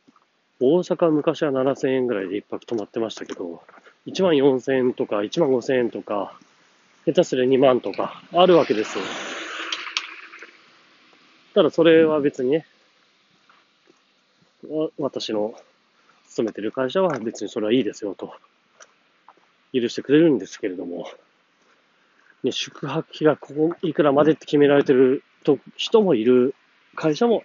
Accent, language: native, Japanese